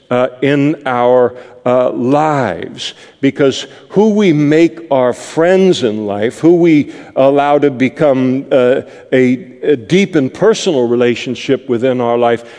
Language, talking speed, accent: English, 135 wpm, American